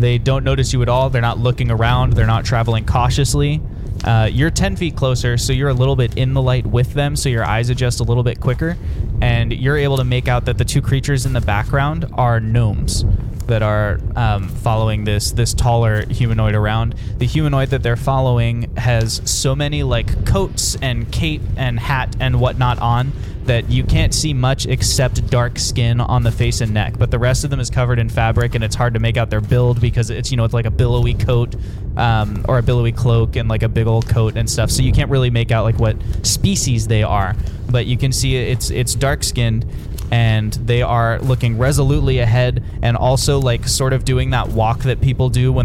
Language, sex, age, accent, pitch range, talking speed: English, male, 20-39, American, 110-125 Hz, 220 wpm